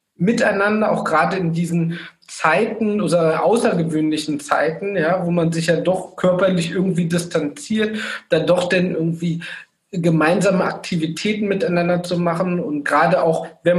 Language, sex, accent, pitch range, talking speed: German, male, German, 165-200 Hz, 135 wpm